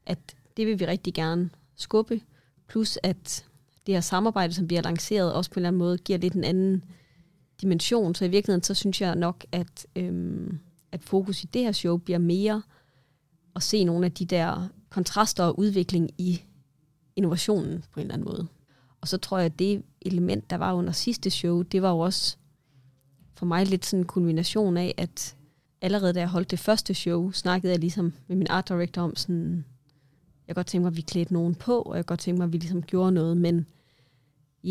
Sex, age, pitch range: female, 30-49, 165-185 Hz